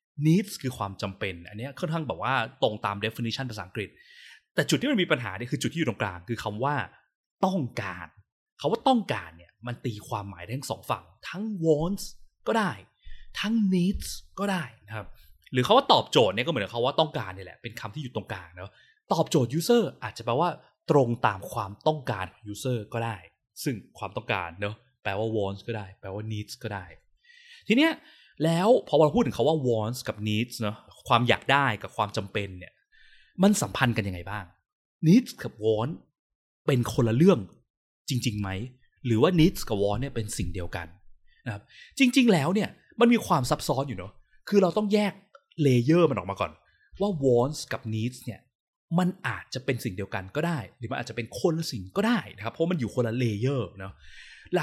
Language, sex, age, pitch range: Thai, male, 20-39, 105-165 Hz